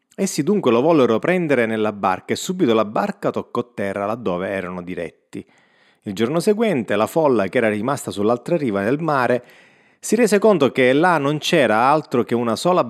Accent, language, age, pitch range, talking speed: native, Italian, 30-49, 110-150 Hz, 180 wpm